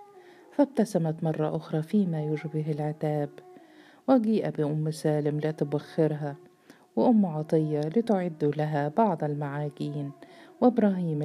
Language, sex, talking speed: Arabic, female, 95 wpm